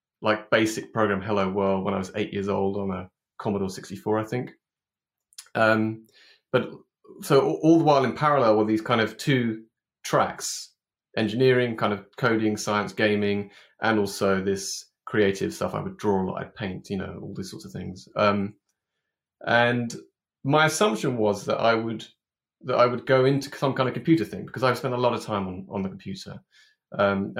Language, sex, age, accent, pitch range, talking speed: English, male, 30-49, British, 100-120 Hz, 190 wpm